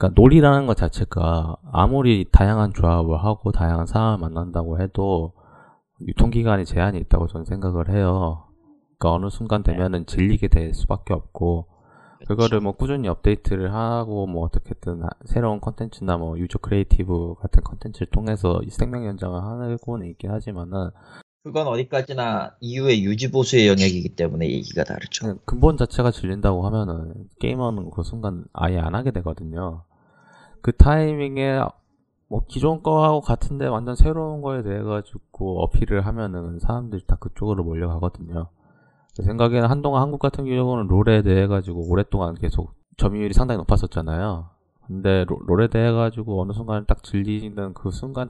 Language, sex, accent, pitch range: Korean, male, native, 90-120 Hz